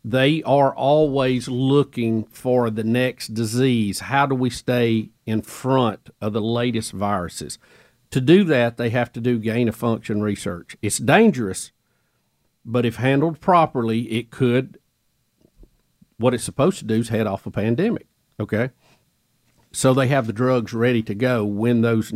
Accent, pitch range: American, 110-130 Hz